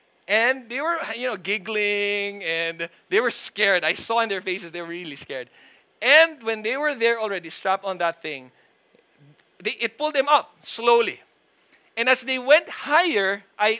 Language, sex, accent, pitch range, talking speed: English, male, Filipino, 215-290 Hz, 180 wpm